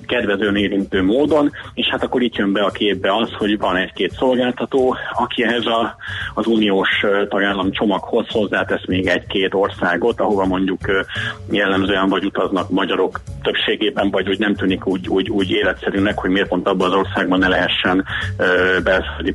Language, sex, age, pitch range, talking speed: Hungarian, male, 30-49, 95-125 Hz, 160 wpm